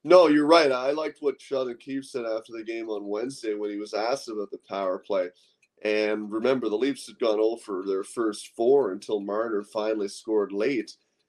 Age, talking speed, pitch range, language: 30-49, 195 wpm, 110-160 Hz, English